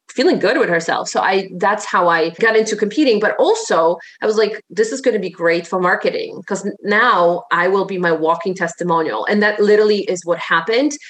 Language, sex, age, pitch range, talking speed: English, female, 30-49, 180-230 Hz, 210 wpm